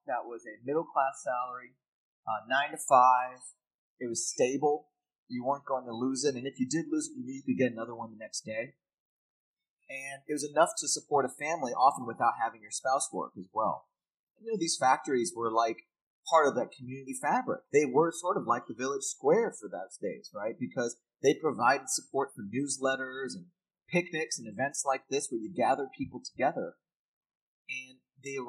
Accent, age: American, 30-49